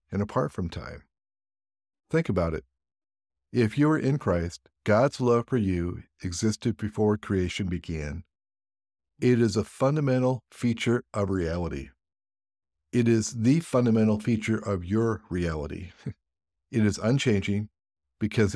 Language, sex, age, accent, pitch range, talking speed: English, male, 50-69, American, 85-105 Hz, 125 wpm